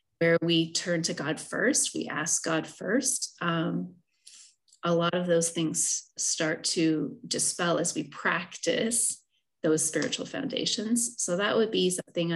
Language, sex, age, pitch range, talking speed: English, female, 30-49, 165-215 Hz, 145 wpm